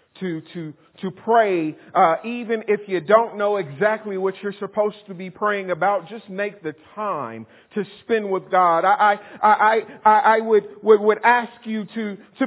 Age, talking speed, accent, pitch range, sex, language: 40-59, 180 wpm, American, 200-235 Hz, male, English